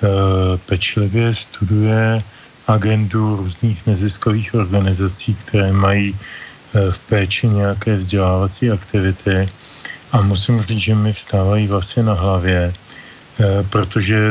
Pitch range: 100-110 Hz